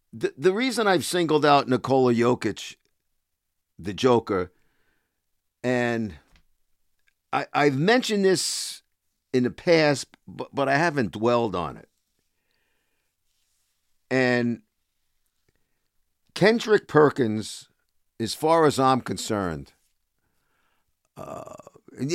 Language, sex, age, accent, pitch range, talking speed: English, male, 50-69, American, 85-140 Hz, 90 wpm